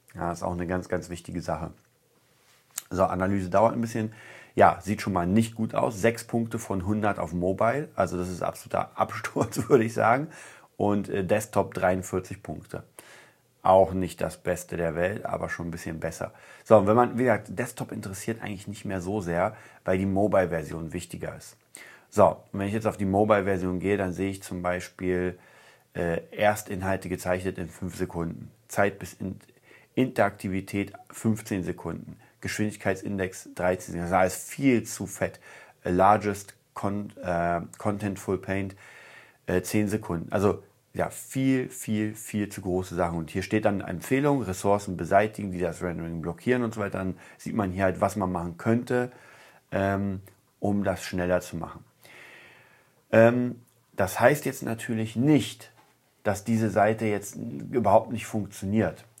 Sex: male